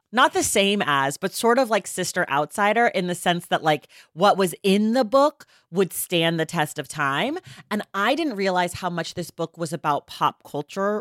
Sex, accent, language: female, American, English